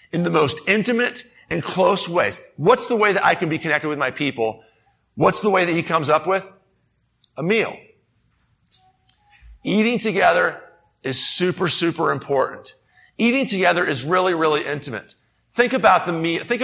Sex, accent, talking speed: male, American, 160 wpm